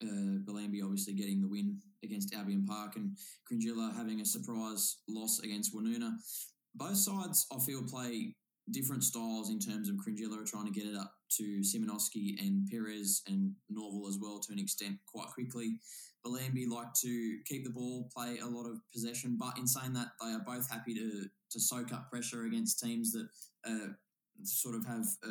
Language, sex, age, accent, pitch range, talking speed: English, male, 20-39, Australian, 110-180 Hz, 185 wpm